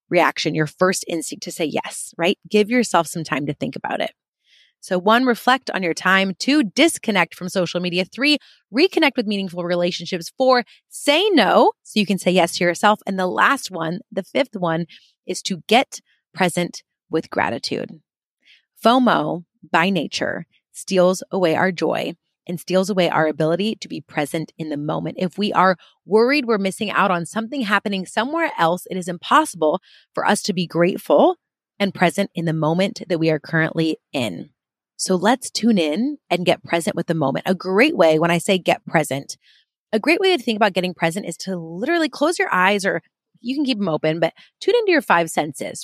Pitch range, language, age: 170-235 Hz, English, 30-49